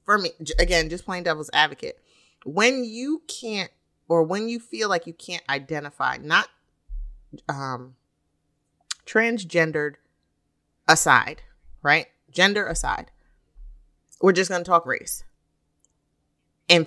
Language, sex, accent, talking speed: English, female, American, 115 wpm